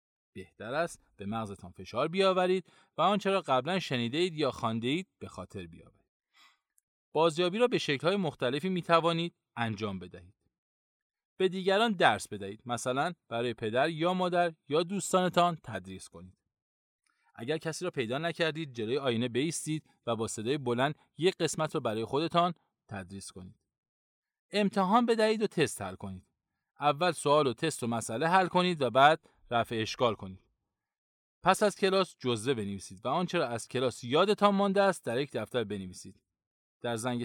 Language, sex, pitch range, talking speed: Persian, male, 115-175 Hz, 150 wpm